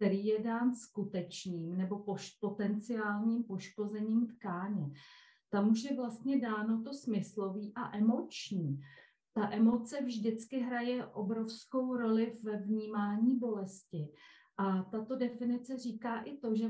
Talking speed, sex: 120 wpm, female